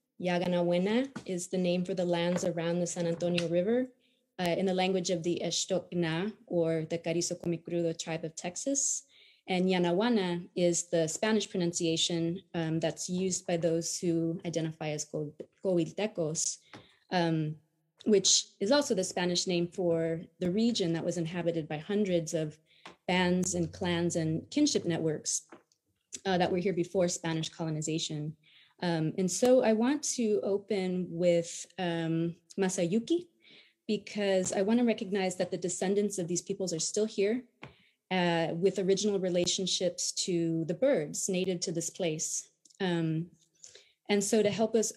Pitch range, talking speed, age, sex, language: 170-200 Hz, 150 wpm, 20-39, female, English